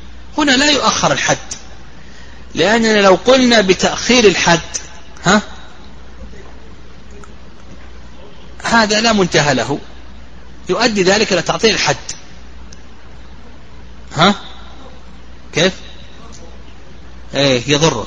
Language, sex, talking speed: Arabic, male, 75 wpm